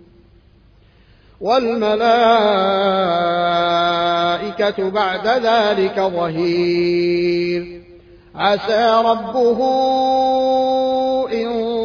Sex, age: male, 30-49